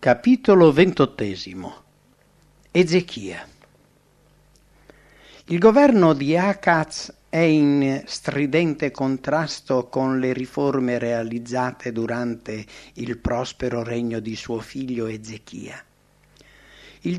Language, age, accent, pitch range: English, 60-79, Italian, 120-165 Hz